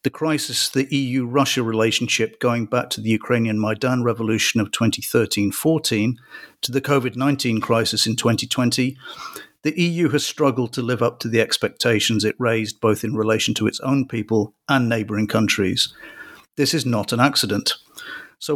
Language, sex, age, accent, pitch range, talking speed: English, male, 50-69, British, 110-135 Hz, 155 wpm